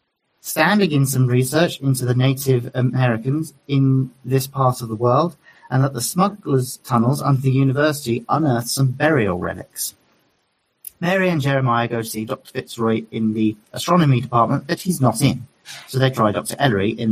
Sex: male